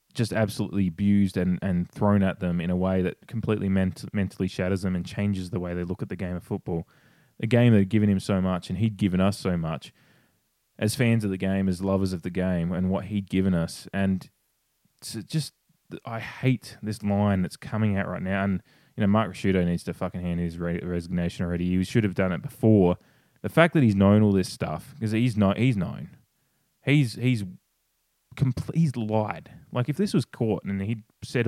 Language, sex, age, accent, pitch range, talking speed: English, male, 20-39, Australian, 90-110 Hz, 215 wpm